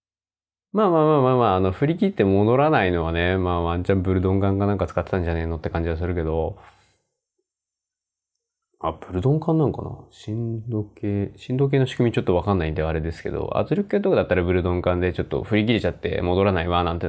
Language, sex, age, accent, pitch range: Japanese, male, 20-39, native, 90-150 Hz